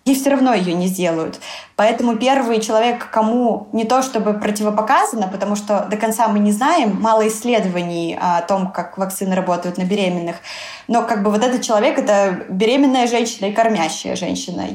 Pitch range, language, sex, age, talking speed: 200-230 Hz, Russian, female, 20-39, 170 wpm